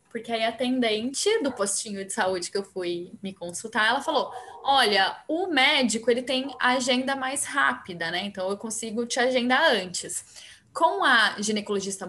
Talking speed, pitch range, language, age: 165 wpm, 200-260 Hz, Portuguese, 10-29